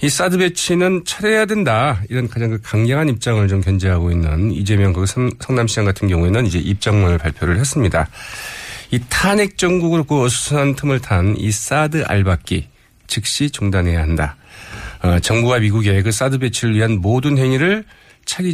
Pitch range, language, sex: 100-135 Hz, Korean, male